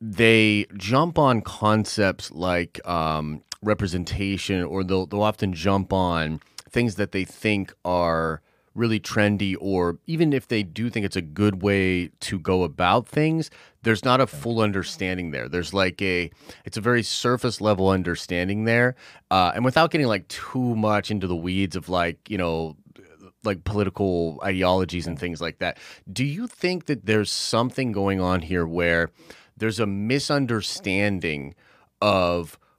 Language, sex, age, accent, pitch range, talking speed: English, male, 30-49, American, 90-125 Hz, 155 wpm